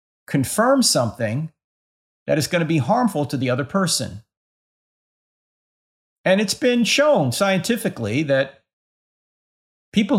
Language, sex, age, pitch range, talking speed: English, male, 50-69, 140-200 Hz, 110 wpm